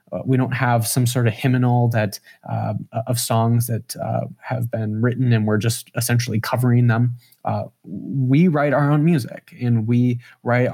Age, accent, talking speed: 20-39, American, 175 wpm